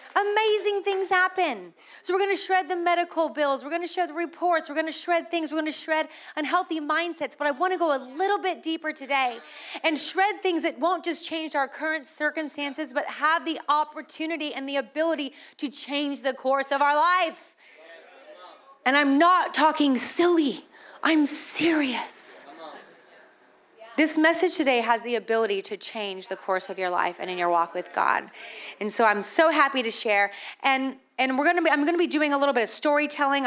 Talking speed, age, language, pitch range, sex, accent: 195 wpm, 30-49, English, 230-315 Hz, female, American